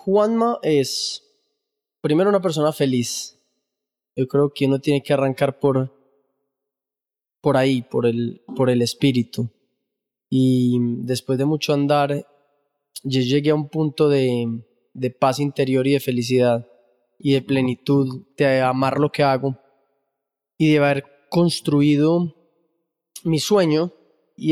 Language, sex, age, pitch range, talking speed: Spanish, male, 20-39, 135-150 Hz, 130 wpm